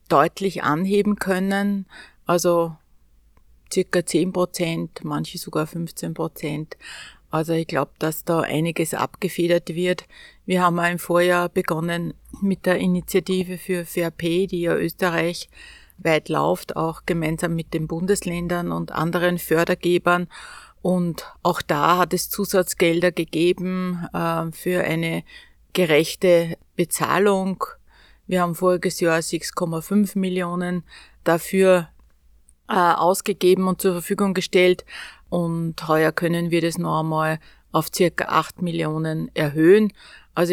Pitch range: 160-180 Hz